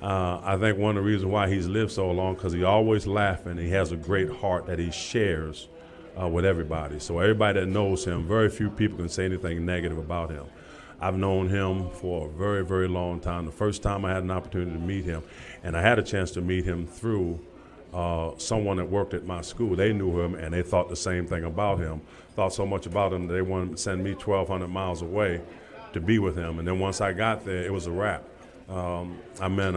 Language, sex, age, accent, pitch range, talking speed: English, male, 40-59, American, 85-100 Hz, 240 wpm